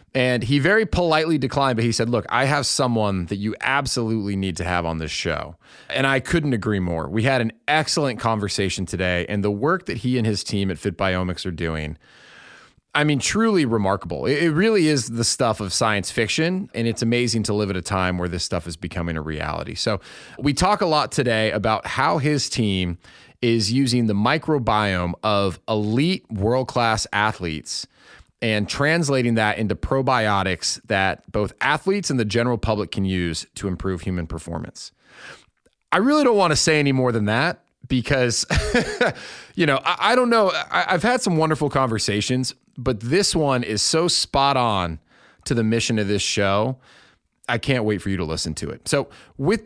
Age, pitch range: 30-49, 100-140 Hz